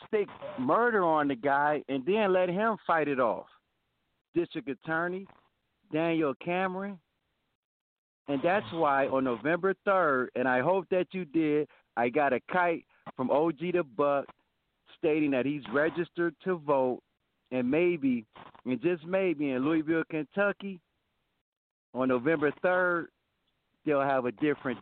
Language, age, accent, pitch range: English, 50-69, American, 135-190 Hz